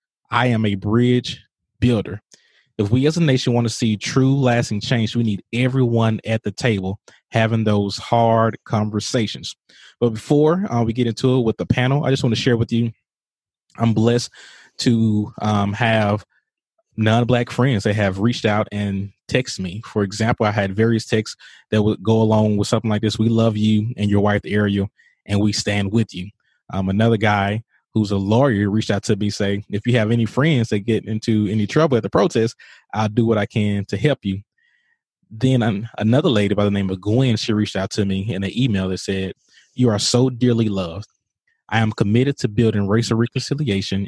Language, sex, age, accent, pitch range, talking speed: English, male, 20-39, American, 100-120 Hz, 200 wpm